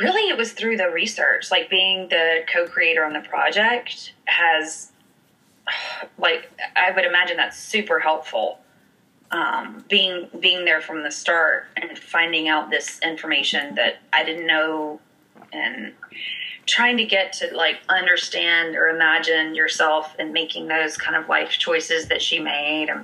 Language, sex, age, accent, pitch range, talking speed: English, female, 20-39, American, 165-235 Hz, 150 wpm